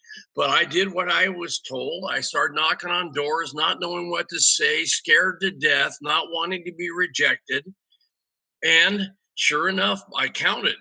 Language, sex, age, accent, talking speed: English, male, 50-69, American, 165 wpm